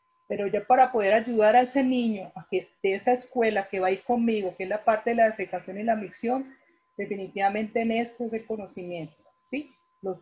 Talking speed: 210 wpm